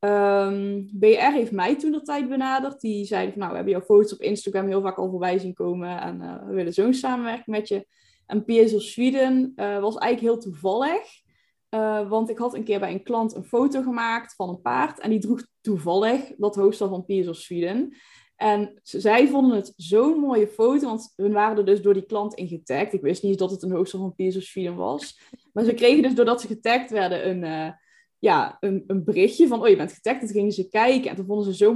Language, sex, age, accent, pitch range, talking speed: Dutch, female, 10-29, Dutch, 190-235 Hz, 230 wpm